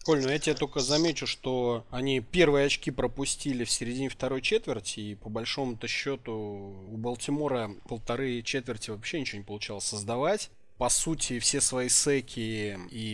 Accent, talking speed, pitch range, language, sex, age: native, 155 wpm, 110-135 Hz, Russian, male, 20-39